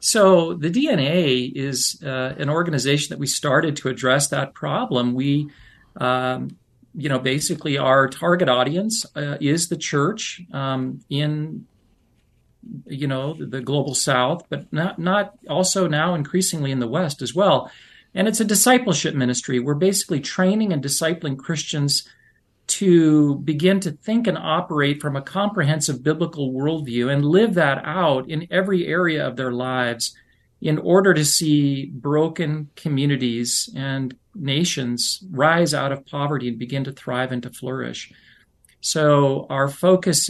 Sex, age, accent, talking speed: male, 40-59, American, 145 wpm